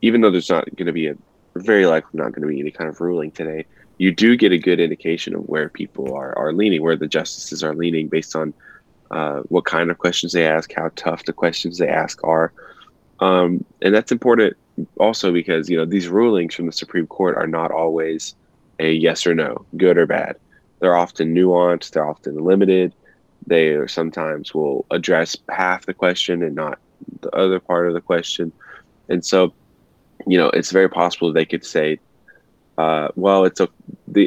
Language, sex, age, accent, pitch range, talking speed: English, male, 20-39, American, 80-90 Hz, 195 wpm